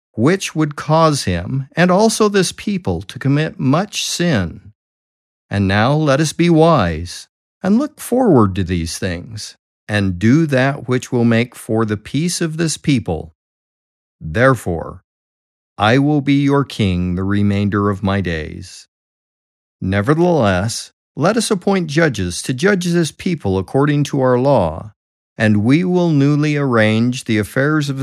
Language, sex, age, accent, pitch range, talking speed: English, male, 50-69, American, 100-160 Hz, 145 wpm